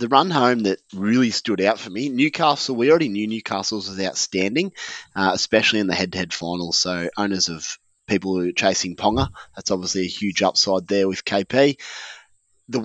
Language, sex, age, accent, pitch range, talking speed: English, male, 20-39, Australian, 95-115 Hz, 180 wpm